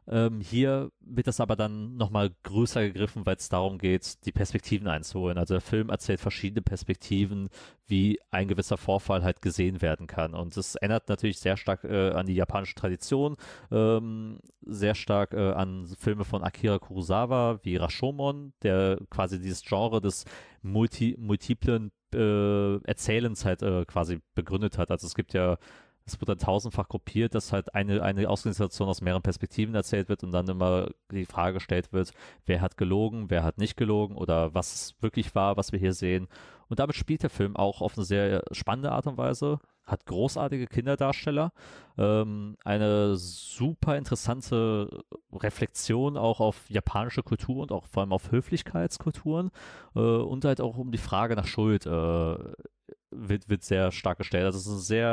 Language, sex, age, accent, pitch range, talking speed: German, male, 30-49, German, 95-115 Hz, 170 wpm